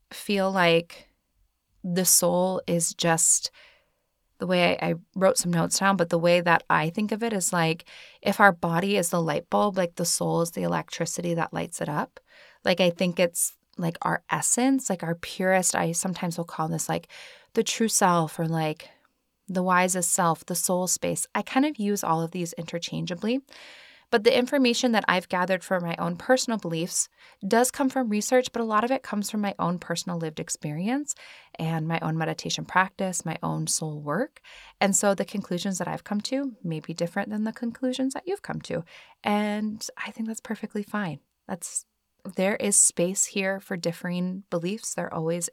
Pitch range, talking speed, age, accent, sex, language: 170-215 Hz, 190 wpm, 20-39, American, female, English